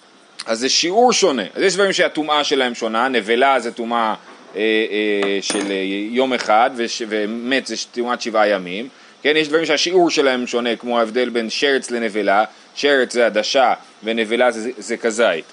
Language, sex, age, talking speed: Hebrew, male, 30-49, 165 wpm